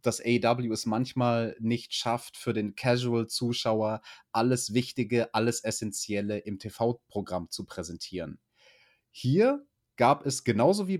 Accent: German